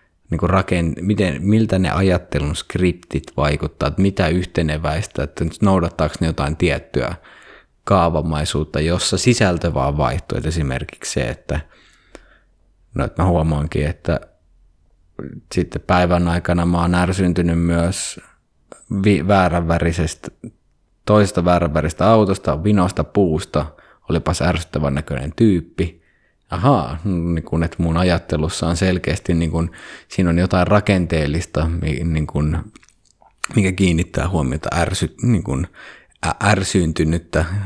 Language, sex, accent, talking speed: Finnish, male, native, 110 wpm